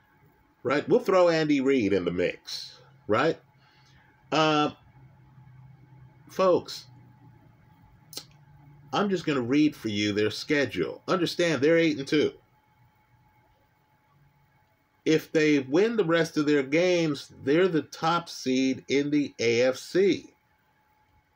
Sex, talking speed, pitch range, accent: male, 110 wpm, 140-165 Hz, American